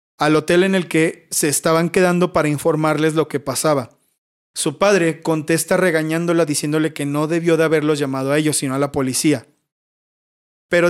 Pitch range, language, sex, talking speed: 145-170 Hz, Spanish, male, 170 wpm